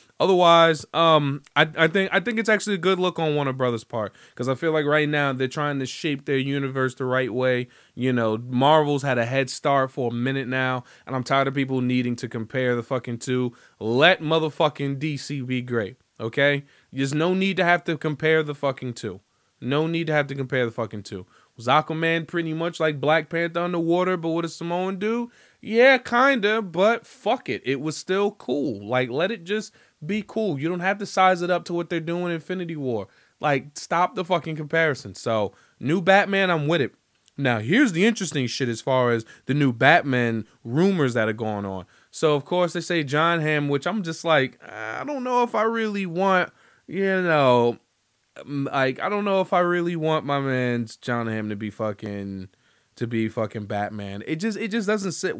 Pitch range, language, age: 125-175 Hz, English, 20-39